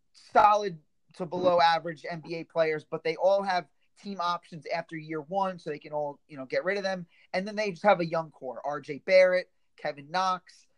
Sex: male